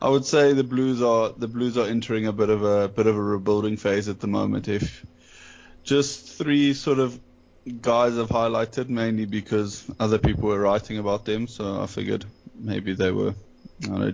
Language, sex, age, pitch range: English, male, 20-39, 110-125 Hz